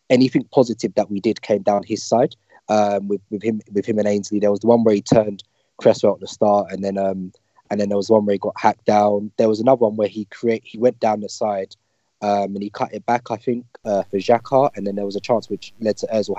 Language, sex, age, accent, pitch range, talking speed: English, male, 20-39, British, 100-115 Hz, 275 wpm